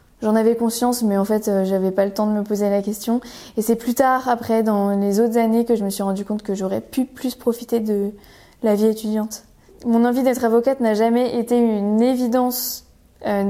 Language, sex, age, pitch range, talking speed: French, female, 20-39, 205-230 Hz, 220 wpm